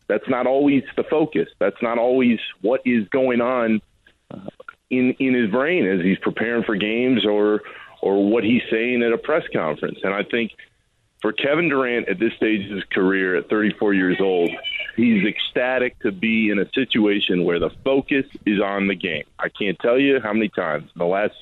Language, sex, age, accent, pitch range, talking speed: English, male, 40-59, American, 100-130 Hz, 195 wpm